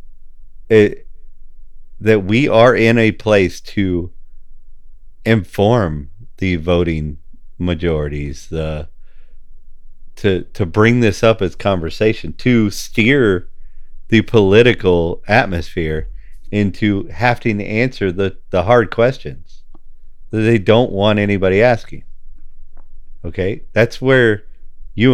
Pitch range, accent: 70-105 Hz, American